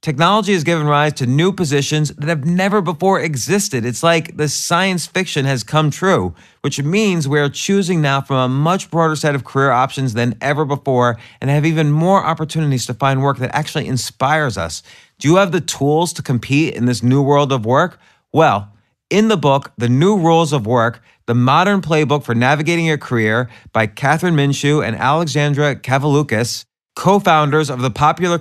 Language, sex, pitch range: English, male, 120-160 Hz